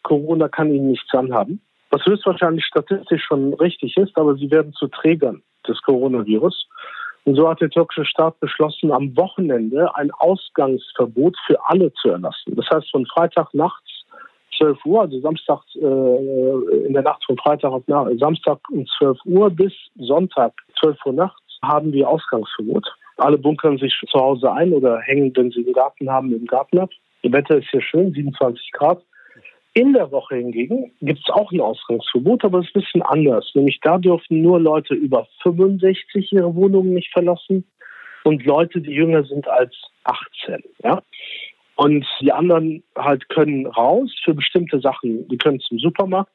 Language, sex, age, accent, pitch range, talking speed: German, male, 50-69, German, 140-180 Hz, 170 wpm